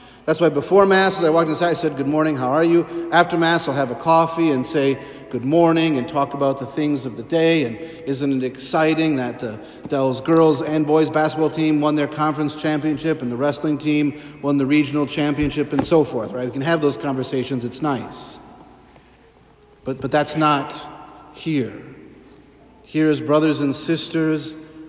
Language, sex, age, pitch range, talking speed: English, male, 40-59, 140-155 Hz, 190 wpm